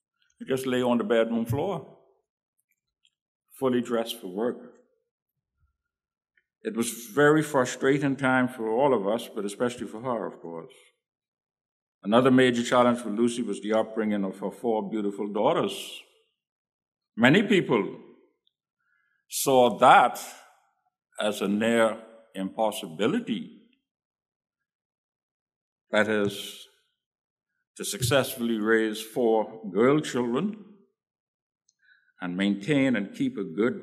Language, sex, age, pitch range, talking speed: English, male, 60-79, 105-145 Hz, 105 wpm